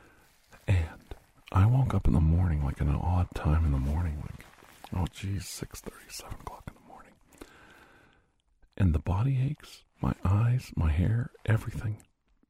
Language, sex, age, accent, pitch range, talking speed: English, male, 50-69, American, 80-100 Hz, 160 wpm